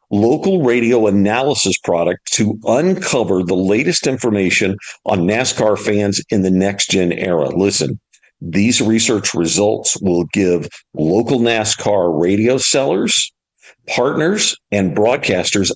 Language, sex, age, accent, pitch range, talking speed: English, male, 50-69, American, 95-120 Hz, 115 wpm